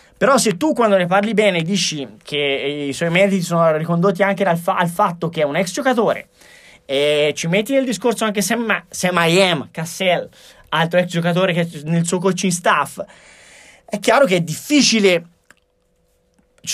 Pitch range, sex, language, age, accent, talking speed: 170-210 Hz, male, Italian, 20-39, native, 175 wpm